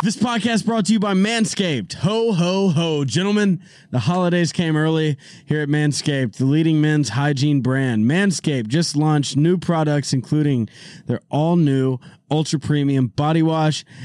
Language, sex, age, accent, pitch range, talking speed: English, male, 20-39, American, 140-175 Hz, 145 wpm